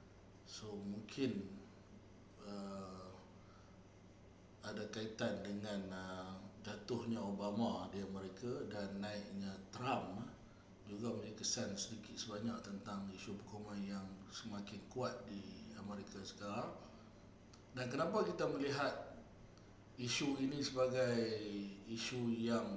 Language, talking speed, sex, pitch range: Malay, 100 wpm, male, 100-120 Hz